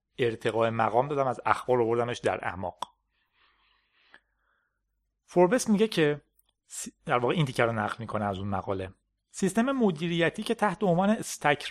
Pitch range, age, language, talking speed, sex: 120-185 Hz, 30-49, Persian, 140 wpm, male